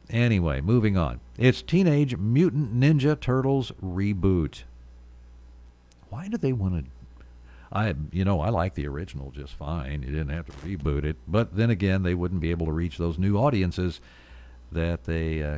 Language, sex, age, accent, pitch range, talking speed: English, male, 60-79, American, 70-110 Hz, 170 wpm